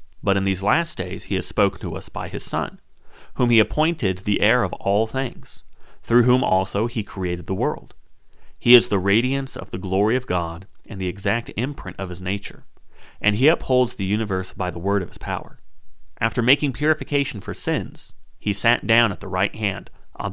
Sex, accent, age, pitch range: male, American, 30-49, 95-115 Hz